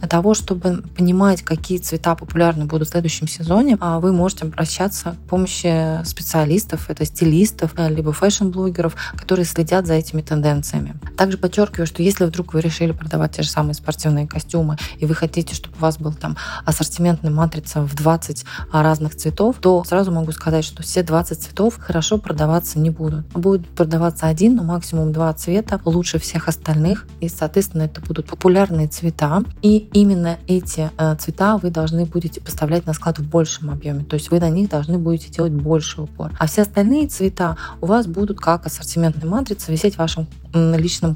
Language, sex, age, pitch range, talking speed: Russian, female, 20-39, 155-180 Hz, 170 wpm